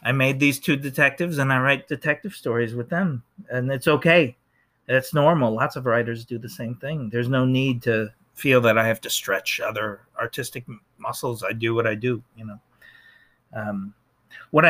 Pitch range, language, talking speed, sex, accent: 110-140 Hz, English, 190 wpm, male, American